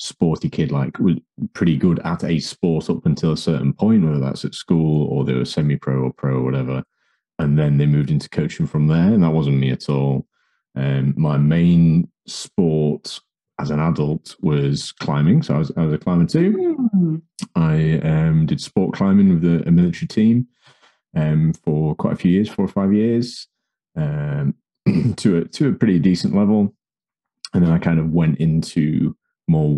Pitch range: 75-95 Hz